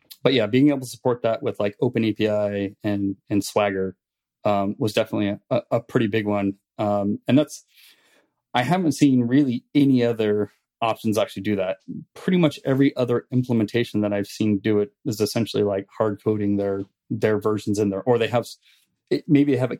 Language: English